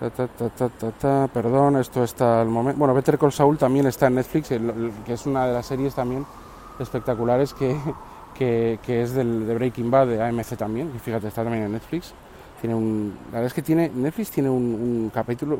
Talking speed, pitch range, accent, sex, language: 220 wpm, 115-145 Hz, Spanish, male, Spanish